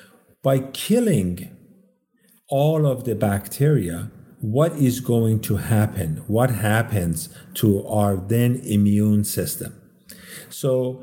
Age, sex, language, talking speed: 50-69, male, English, 105 wpm